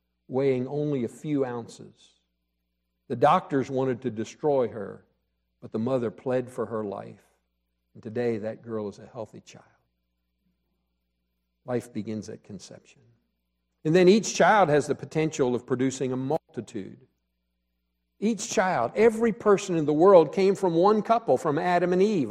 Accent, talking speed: American, 150 wpm